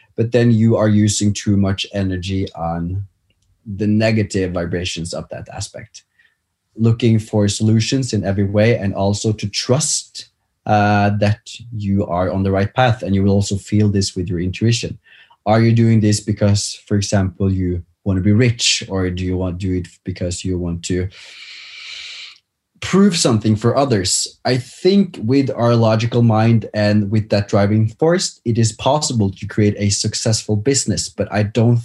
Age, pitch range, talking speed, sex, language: 20-39, 100-115 Hz, 170 wpm, male, English